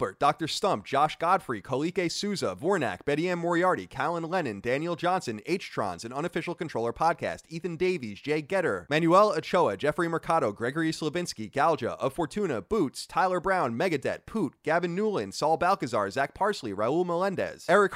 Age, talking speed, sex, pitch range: 30-49, 155 wpm, male, 165-200 Hz